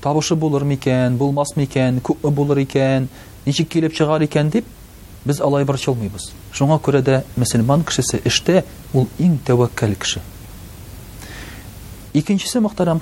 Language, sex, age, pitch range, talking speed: Russian, male, 40-59, 105-150 Hz, 110 wpm